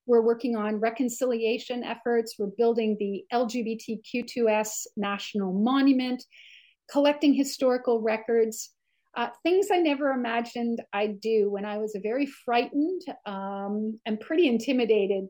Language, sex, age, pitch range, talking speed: English, female, 50-69, 215-275 Hz, 120 wpm